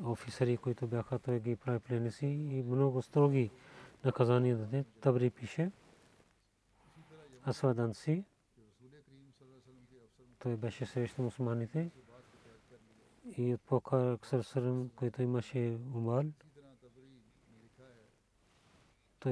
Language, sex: Bulgarian, male